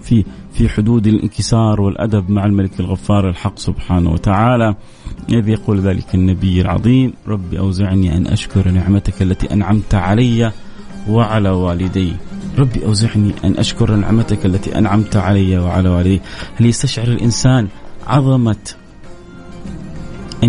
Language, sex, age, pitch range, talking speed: Arabic, male, 30-49, 100-135 Hz, 115 wpm